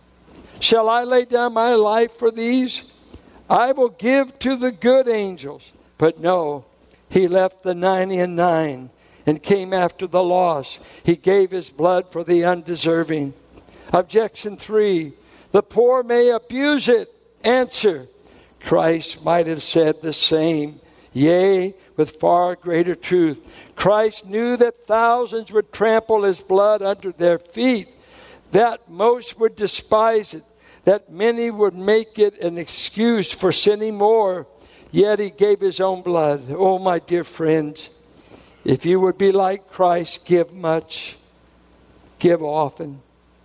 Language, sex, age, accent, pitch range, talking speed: English, male, 60-79, American, 145-210 Hz, 140 wpm